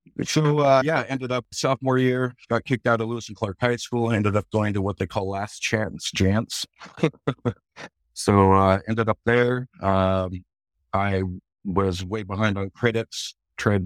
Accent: American